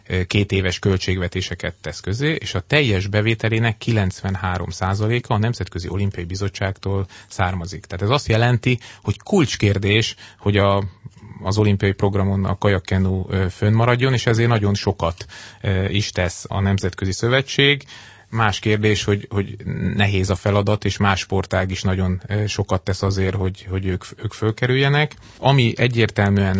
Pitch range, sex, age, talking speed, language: 100-110 Hz, male, 30-49, 140 wpm, Hungarian